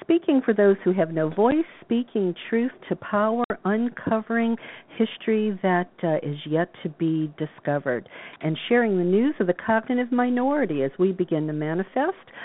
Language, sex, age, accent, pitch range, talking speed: English, female, 50-69, American, 170-230 Hz, 160 wpm